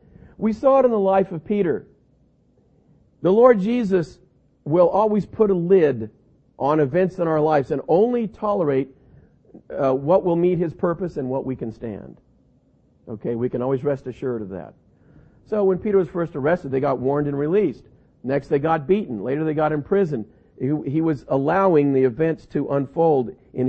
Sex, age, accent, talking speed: male, 50-69, American, 180 wpm